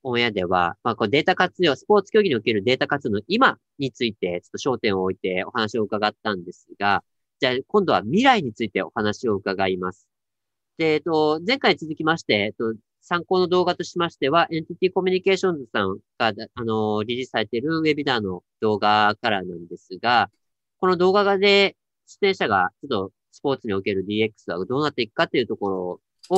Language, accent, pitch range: Japanese, native, 105-160 Hz